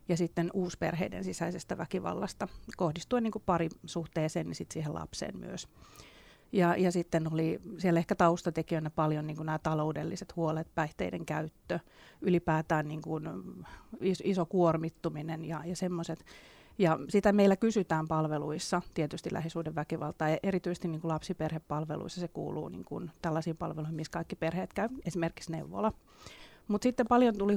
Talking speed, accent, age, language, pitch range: 135 wpm, native, 30-49, Finnish, 160-180 Hz